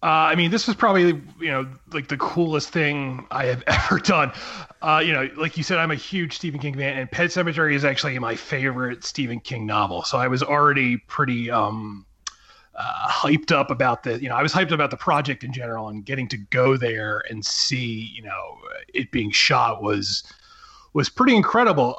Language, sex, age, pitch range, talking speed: English, male, 30-49, 120-155 Hz, 205 wpm